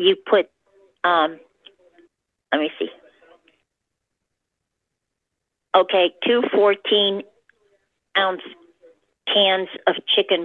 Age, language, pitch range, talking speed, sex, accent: 50-69, English, 180-215 Hz, 70 wpm, female, American